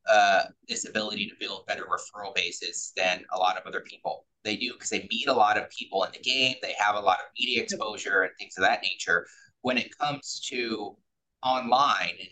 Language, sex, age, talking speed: English, male, 20-39, 210 wpm